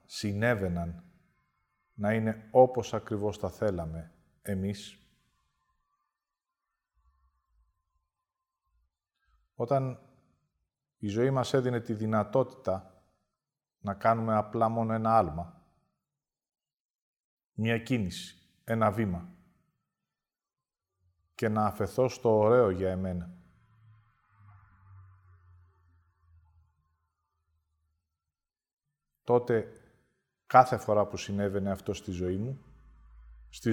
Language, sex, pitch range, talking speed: Greek, male, 85-120 Hz, 75 wpm